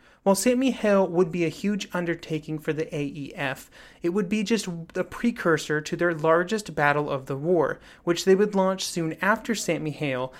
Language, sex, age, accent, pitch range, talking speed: English, male, 30-49, American, 150-190 Hz, 185 wpm